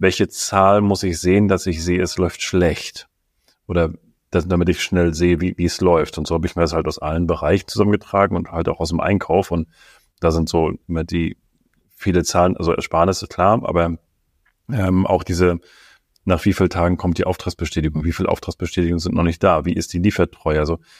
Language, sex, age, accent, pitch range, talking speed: German, male, 30-49, German, 85-95 Hz, 205 wpm